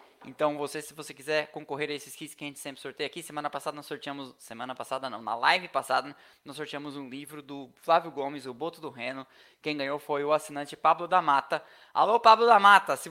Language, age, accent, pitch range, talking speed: Portuguese, 20-39, Brazilian, 150-190 Hz, 225 wpm